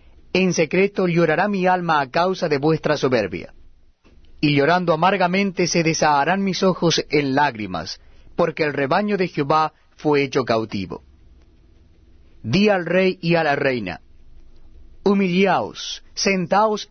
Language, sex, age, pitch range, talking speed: Spanish, male, 40-59, 115-180 Hz, 130 wpm